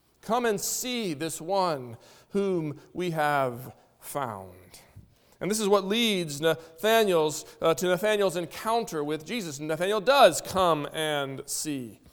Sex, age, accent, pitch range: male, 40-59, American, 160-245 Hz